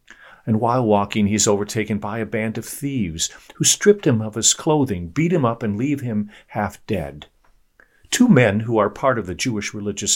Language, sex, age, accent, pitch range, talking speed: English, male, 50-69, American, 105-150 Hz, 195 wpm